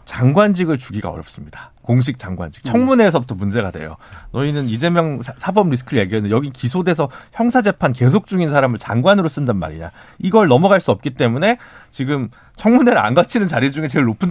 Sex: male